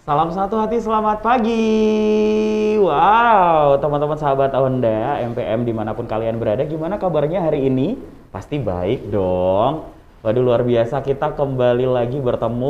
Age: 20-39